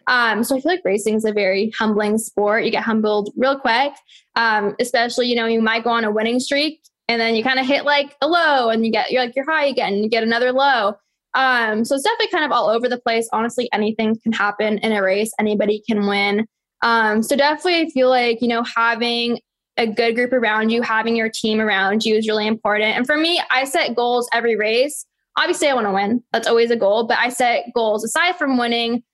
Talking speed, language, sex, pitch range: 235 wpm, English, female, 215-250 Hz